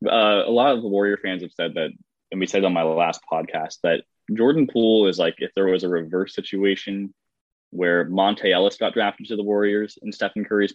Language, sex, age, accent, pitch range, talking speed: English, male, 20-39, American, 90-105 Hz, 220 wpm